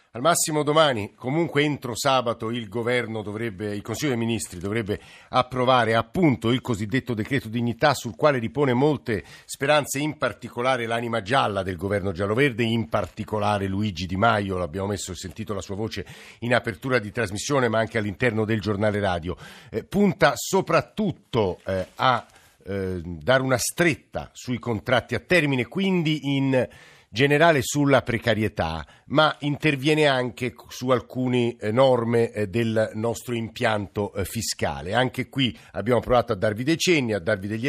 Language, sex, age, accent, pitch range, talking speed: Italian, male, 50-69, native, 105-130 Hz, 150 wpm